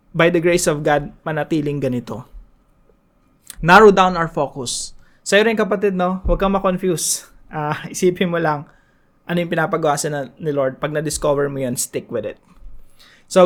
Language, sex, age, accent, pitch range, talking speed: English, male, 20-39, Filipino, 145-190 Hz, 155 wpm